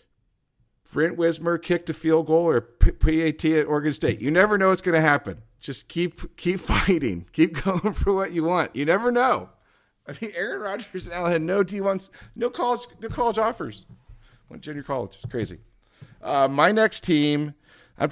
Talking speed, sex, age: 185 wpm, male, 50-69